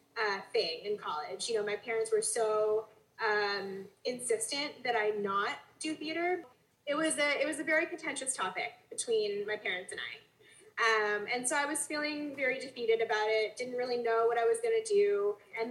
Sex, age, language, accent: female, 10-29, English, American